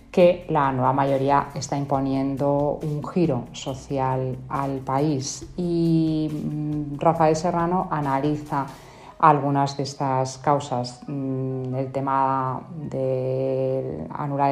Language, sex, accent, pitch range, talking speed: Spanish, female, Spanish, 135-150 Hz, 95 wpm